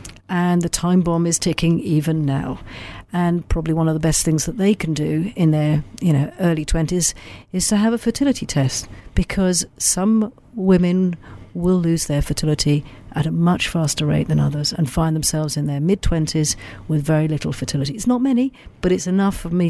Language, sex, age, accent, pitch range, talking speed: English, female, 50-69, British, 150-185 Hz, 195 wpm